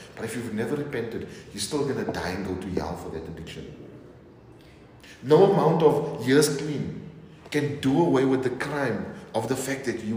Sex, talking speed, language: male, 195 wpm, English